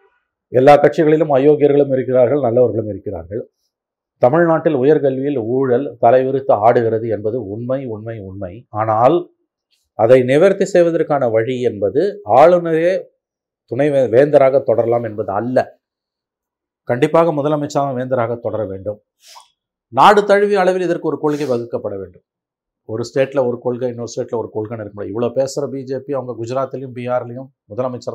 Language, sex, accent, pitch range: Tamil, male, native, 115-150 Hz